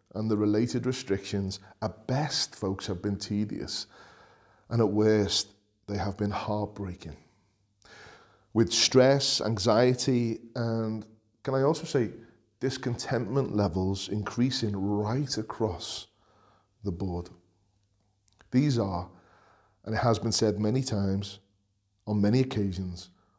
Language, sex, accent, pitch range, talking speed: English, male, British, 100-130 Hz, 115 wpm